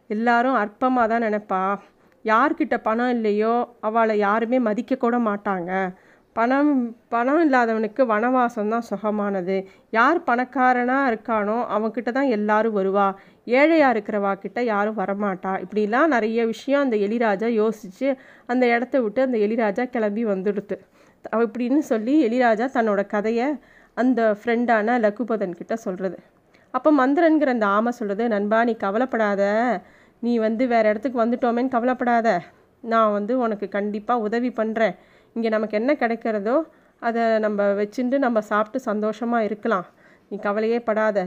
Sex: female